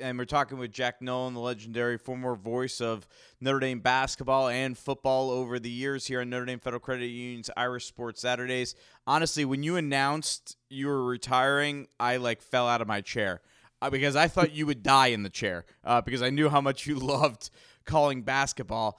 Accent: American